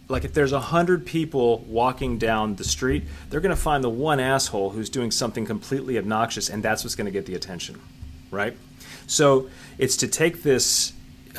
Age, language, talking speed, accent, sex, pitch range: 30-49, English, 190 wpm, American, male, 105-140 Hz